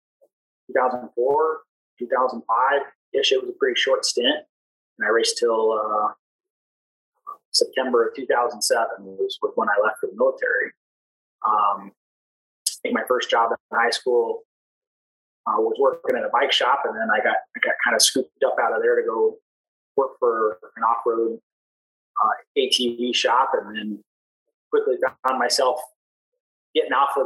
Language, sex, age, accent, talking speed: English, male, 20-39, American, 155 wpm